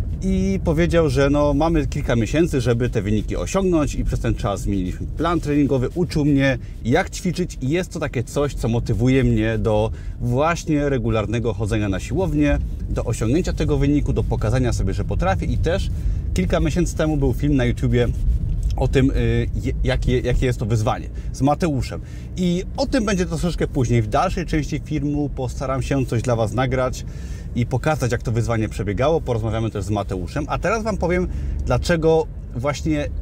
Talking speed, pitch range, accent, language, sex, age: 170 wpm, 115-150 Hz, native, Polish, male, 30-49